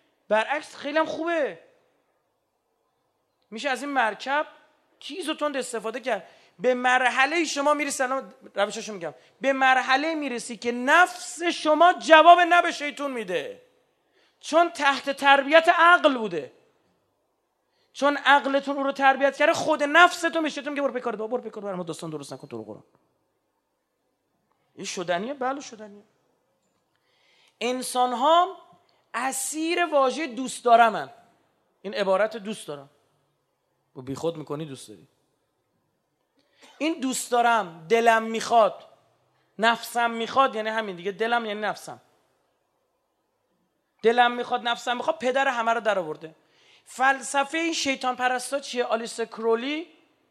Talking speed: 120 wpm